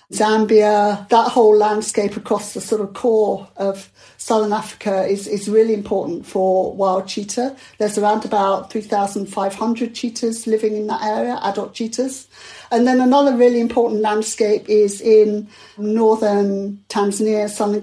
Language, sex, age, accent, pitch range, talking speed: English, female, 40-59, British, 200-230 Hz, 140 wpm